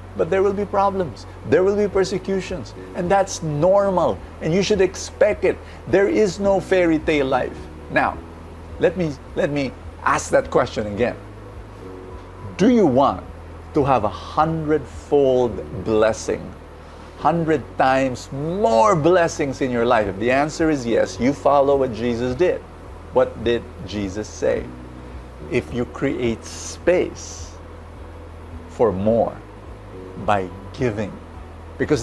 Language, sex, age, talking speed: English, male, 50-69, 130 wpm